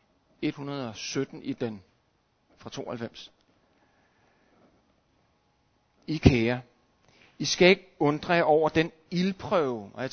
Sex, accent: male, native